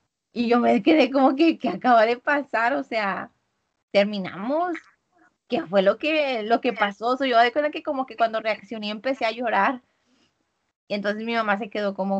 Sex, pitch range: female, 215-260 Hz